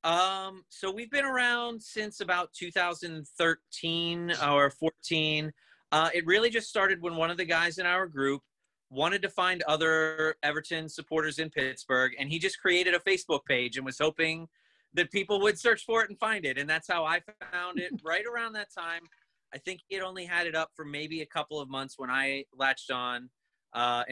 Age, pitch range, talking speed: 30-49, 140-185 Hz, 195 wpm